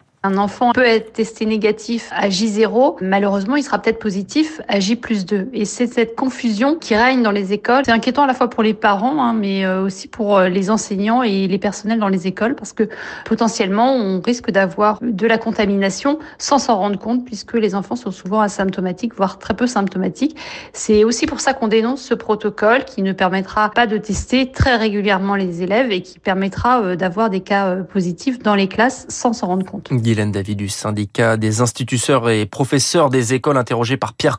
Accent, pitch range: French, 130-215 Hz